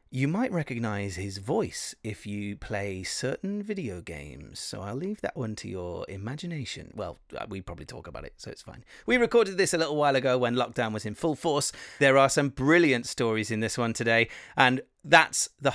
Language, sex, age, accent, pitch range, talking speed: English, male, 30-49, British, 110-155 Hz, 200 wpm